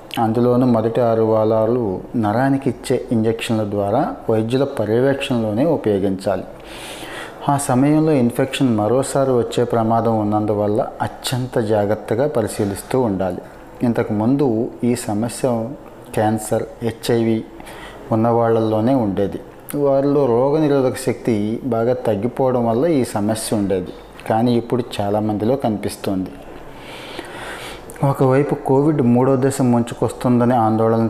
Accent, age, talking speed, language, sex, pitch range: native, 30-49, 95 wpm, Telugu, male, 110-125 Hz